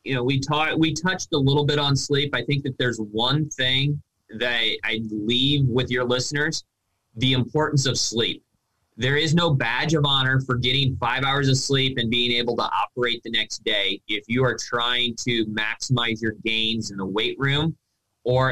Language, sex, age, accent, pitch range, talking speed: English, male, 20-39, American, 110-135 Hz, 200 wpm